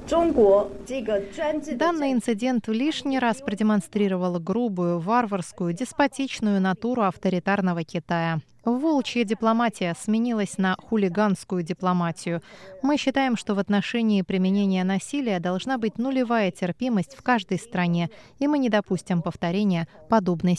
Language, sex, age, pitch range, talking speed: Russian, female, 20-39, 185-245 Hz, 110 wpm